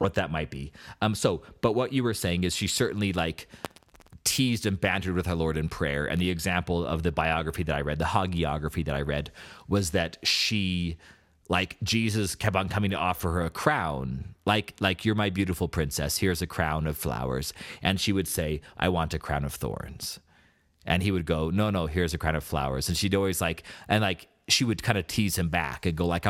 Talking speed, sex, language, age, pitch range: 225 wpm, male, English, 30-49, 80-100 Hz